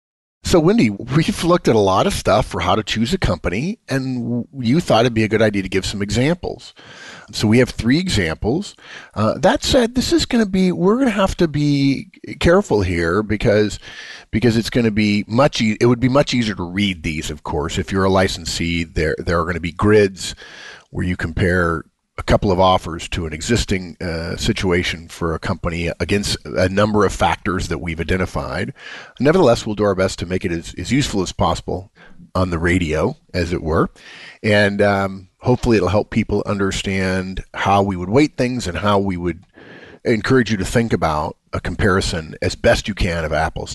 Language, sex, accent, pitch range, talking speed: English, male, American, 90-120 Hz, 205 wpm